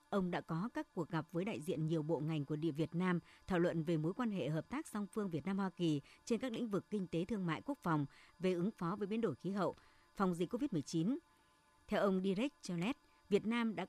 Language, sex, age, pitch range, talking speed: Vietnamese, male, 60-79, 165-220 Hz, 245 wpm